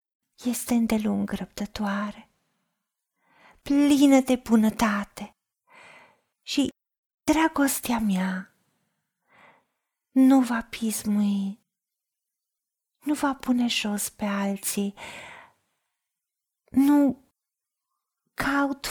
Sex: female